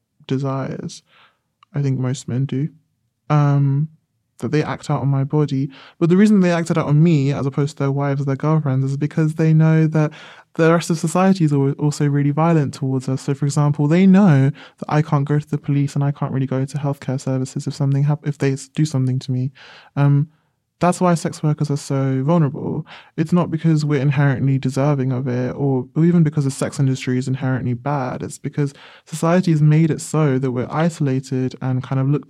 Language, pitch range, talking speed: English, 135-155 Hz, 205 wpm